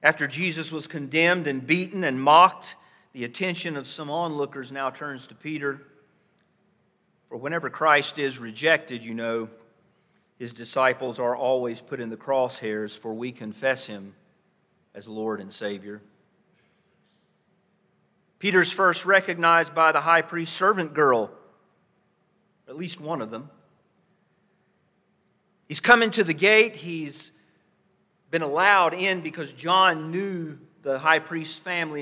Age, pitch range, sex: 40-59, 135-190 Hz, male